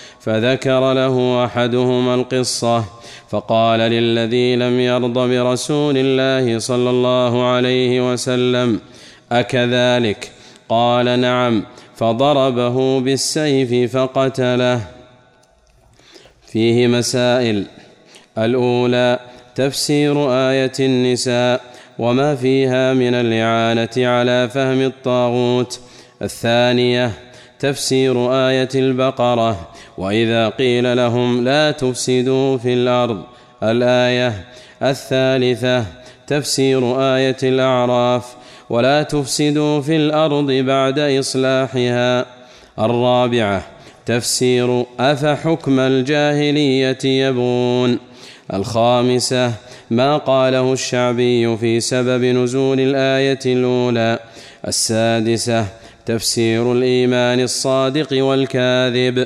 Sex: male